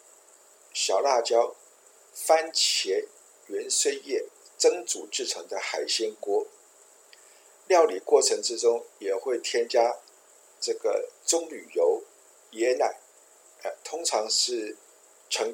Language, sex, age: Chinese, male, 50-69